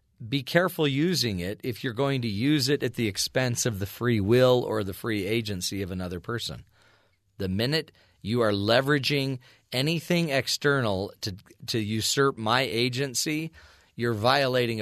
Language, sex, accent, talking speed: English, male, American, 155 wpm